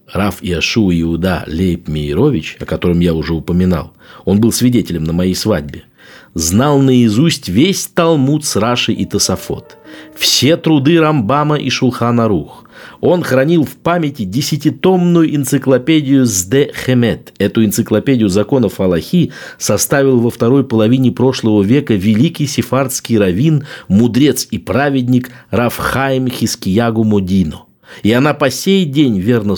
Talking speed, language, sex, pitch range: 130 wpm, Russian, male, 100-135 Hz